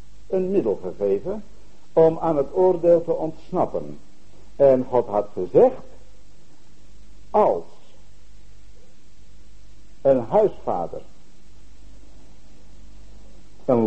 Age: 60-79